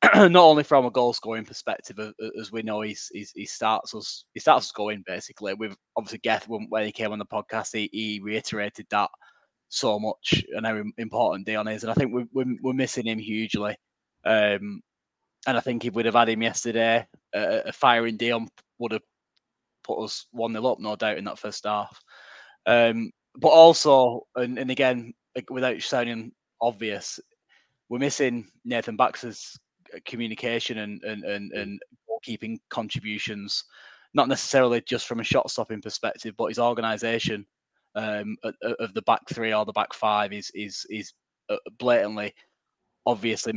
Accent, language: British, English